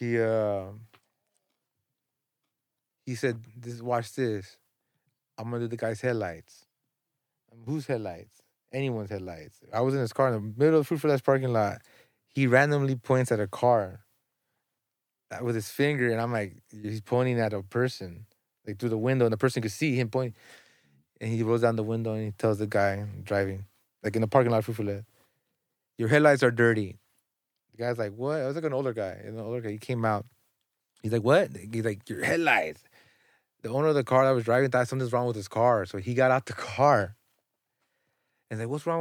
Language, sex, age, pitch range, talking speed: English, male, 30-49, 110-130 Hz, 200 wpm